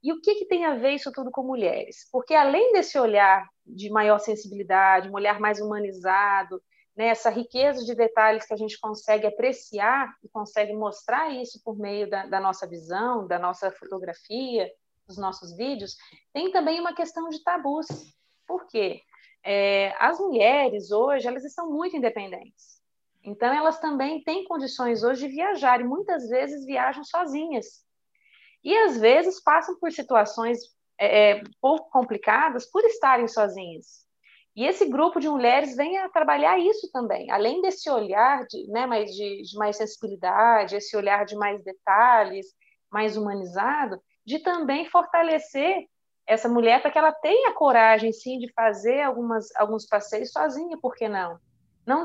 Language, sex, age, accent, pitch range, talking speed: Portuguese, female, 30-49, Brazilian, 210-310 Hz, 155 wpm